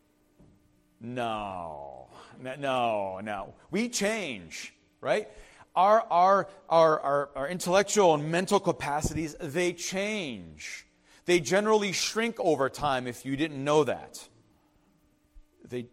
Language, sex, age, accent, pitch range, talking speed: English, male, 40-59, American, 140-230 Hz, 100 wpm